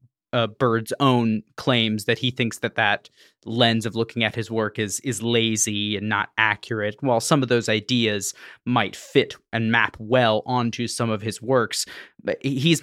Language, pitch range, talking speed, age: English, 115-135 Hz, 175 wpm, 20-39